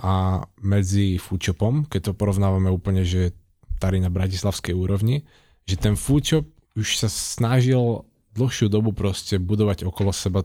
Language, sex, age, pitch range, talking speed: Slovak, male, 20-39, 95-110 Hz, 130 wpm